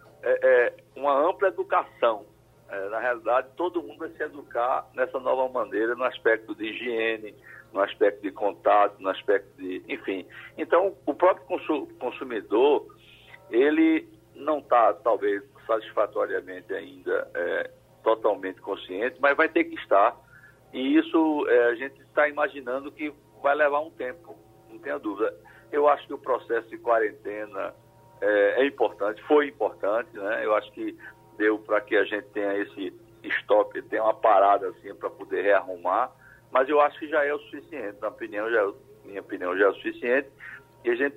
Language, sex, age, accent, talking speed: Portuguese, male, 60-79, Brazilian, 155 wpm